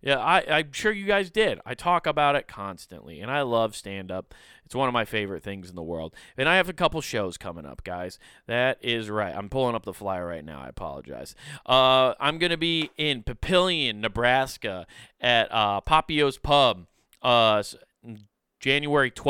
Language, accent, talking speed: English, American, 185 wpm